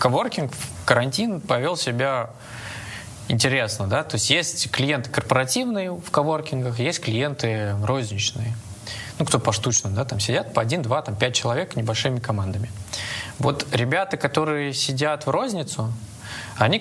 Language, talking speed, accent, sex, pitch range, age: Russian, 130 wpm, native, male, 110-135 Hz, 20-39